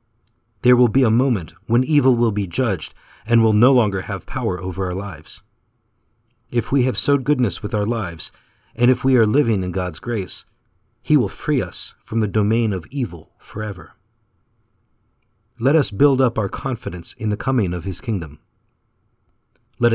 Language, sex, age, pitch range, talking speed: English, male, 40-59, 100-120 Hz, 175 wpm